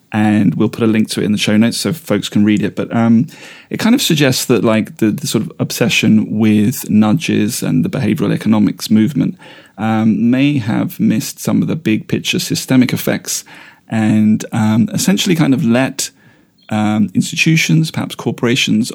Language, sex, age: English, male, 30-49